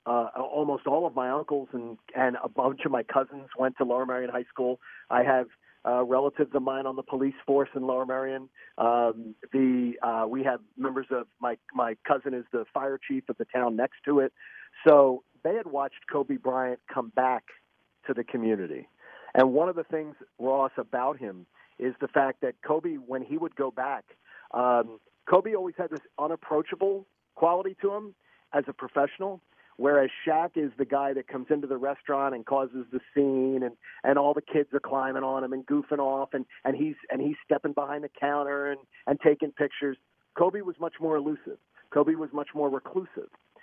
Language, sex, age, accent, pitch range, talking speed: English, male, 40-59, American, 130-155 Hz, 195 wpm